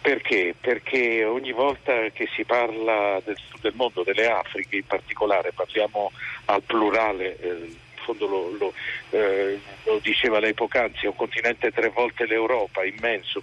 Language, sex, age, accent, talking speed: Italian, male, 50-69, native, 145 wpm